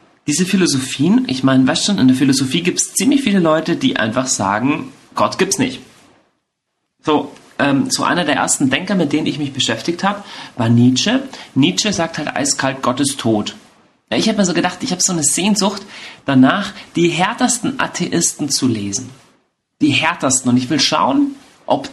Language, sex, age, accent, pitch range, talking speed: German, male, 40-59, German, 130-195 Hz, 185 wpm